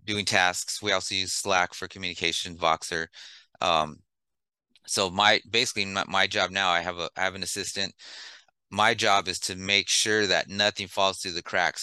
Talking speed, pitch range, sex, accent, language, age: 185 wpm, 90-105 Hz, male, American, English, 30-49